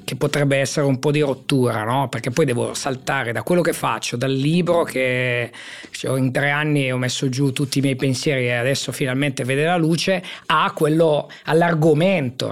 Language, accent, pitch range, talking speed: Italian, native, 140-185 Hz, 180 wpm